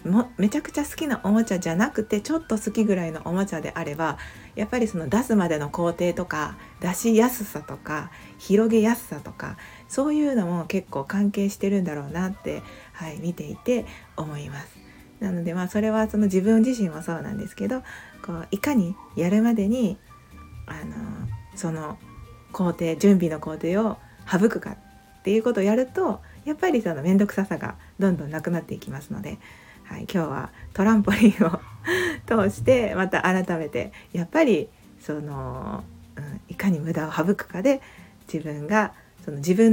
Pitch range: 165-215 Hz